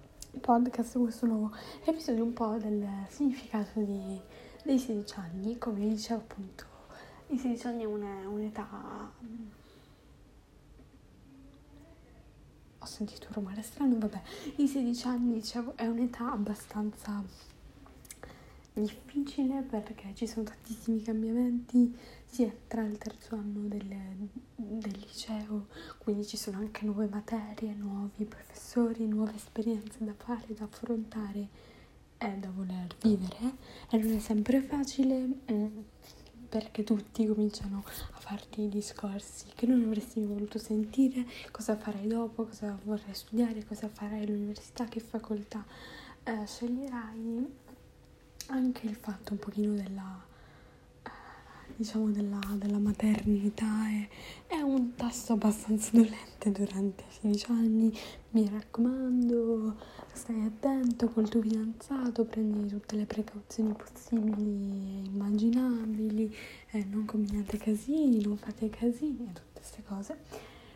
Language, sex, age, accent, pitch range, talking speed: Italian, female, 10-29, native, 210-235 Hz, 120 wpm